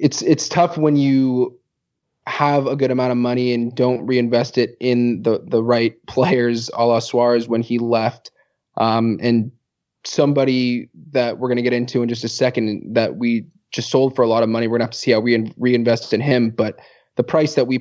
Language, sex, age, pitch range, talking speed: English, male, 20-39, 120-130 Hz, 215 wpm